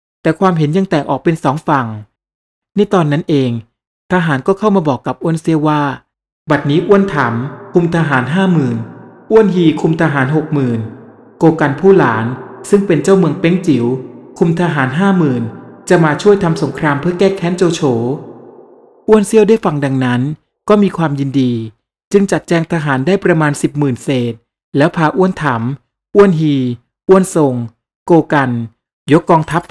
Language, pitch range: Thai, 135-180 Hz